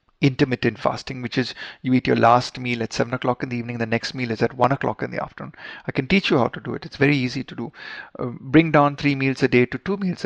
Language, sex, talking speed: Hindi, male, 280 wpm